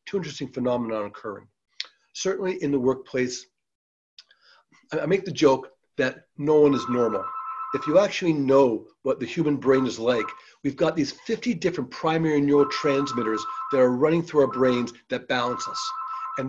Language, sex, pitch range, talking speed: English, male, 135-185 Hz, 155 wpm